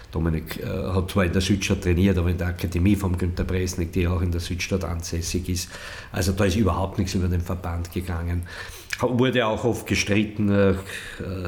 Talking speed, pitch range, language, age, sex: 190 wpm, 90-100 Hz, German, 50-69, male